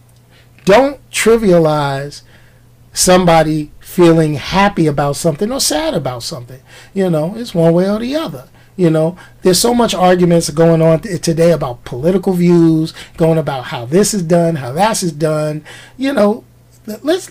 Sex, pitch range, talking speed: male, 135-200 Hz, 155 wpm